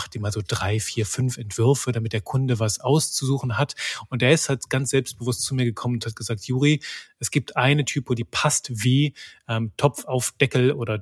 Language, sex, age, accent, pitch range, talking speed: German, male, 30-49, German, 115-140 Hz, 215 wpm